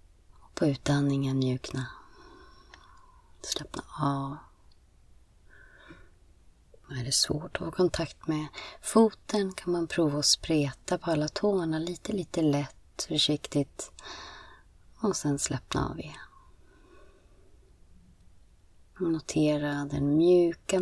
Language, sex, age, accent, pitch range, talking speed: Swedish, female, 30-49, native, 135-165 Hz, 100 wpm